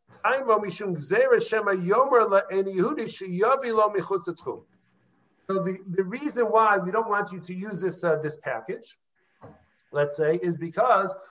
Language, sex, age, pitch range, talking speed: English, male, 50-69, 170-225 Hz, 100 wpm